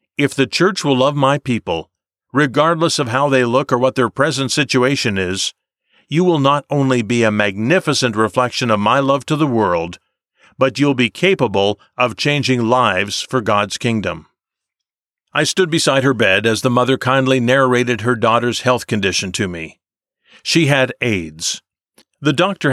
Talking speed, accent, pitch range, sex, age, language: 165 wpm, American, 115-145 Hz, male, 50-69, English